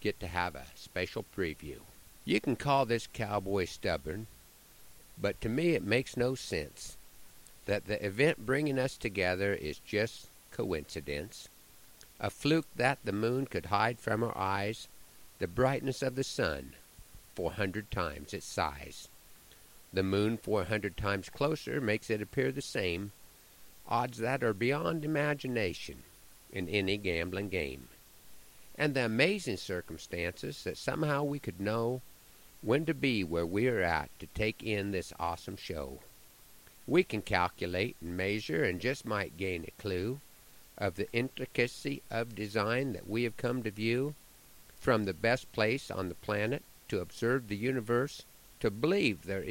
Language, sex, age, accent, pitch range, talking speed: English, male, 50-69, American, 95-130 Hz, 150 wpm